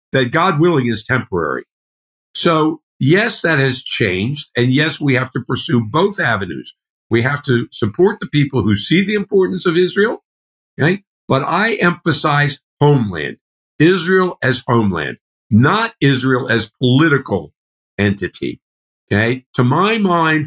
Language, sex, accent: English, male, American